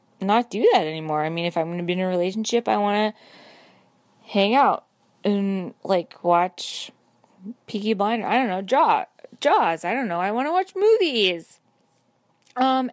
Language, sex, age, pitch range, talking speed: English, female, 20-39, 175-215 Hz, 170 wpm